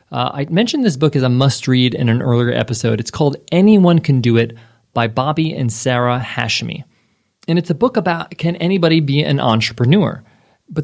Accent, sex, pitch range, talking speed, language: American, male, 125-155 Hz, 190 wpm, English